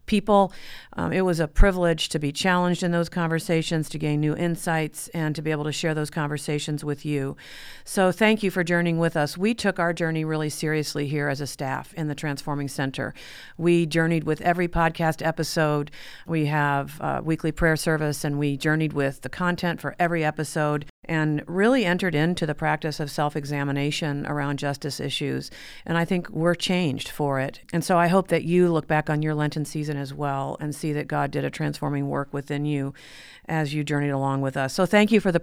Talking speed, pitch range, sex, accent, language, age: 205 wpm, 145-165 Hz, female, American, English, 50-69